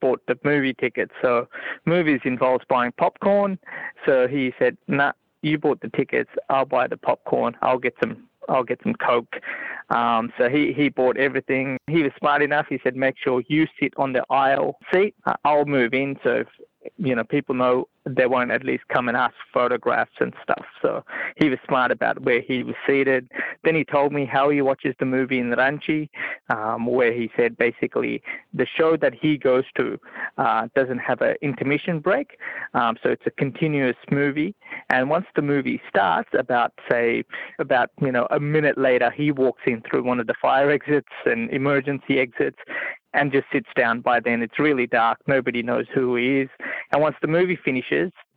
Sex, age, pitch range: male, 20-39, 125-150 Hz